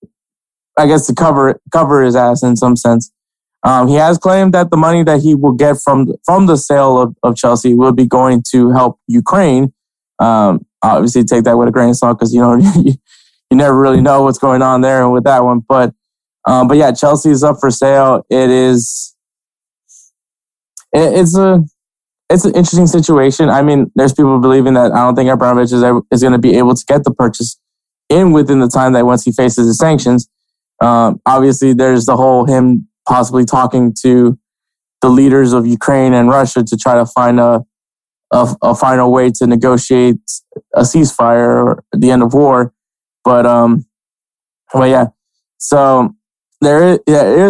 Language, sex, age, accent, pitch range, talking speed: English, male, 20-39, American, 125-145 Hz, 185 wpm